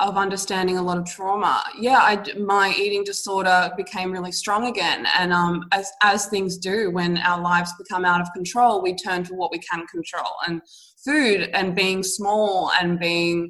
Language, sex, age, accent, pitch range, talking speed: English, female, 20-39, Australian, 180-205 Hz, 180 wpm